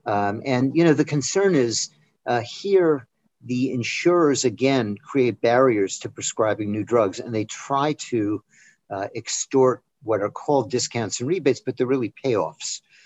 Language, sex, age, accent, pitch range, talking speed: English, male, 50-69, American, 105-135 Hz, 155 wpm